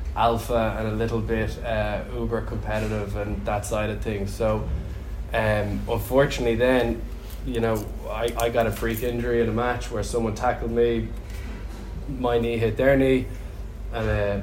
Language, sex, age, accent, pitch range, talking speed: English, male, 20-39, Irish, 100-120 Hz, 160 wpm